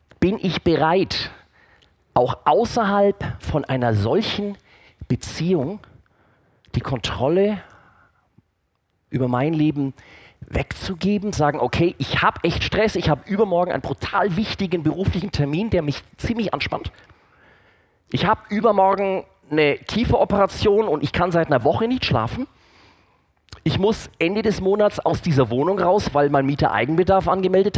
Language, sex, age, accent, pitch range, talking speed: German, male, 40-59, German, 135-195 Hz, 130 wpm